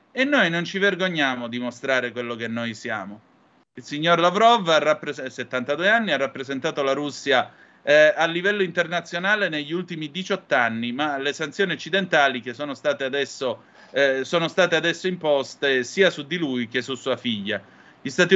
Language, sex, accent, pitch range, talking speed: Italian, male, native, 130-175 Hz, 160 wpm